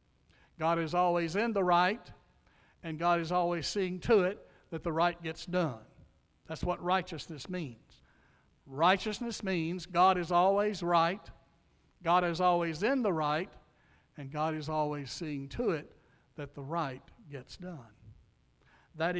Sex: male